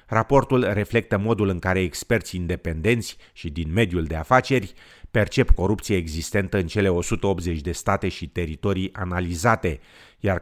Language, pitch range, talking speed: Romanian, 90-110 Hz, 140 wpm